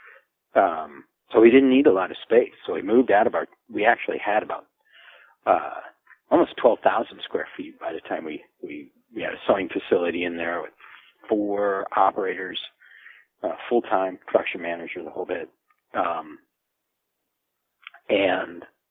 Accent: American